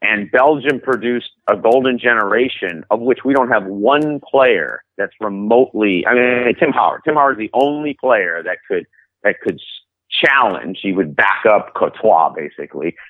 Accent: American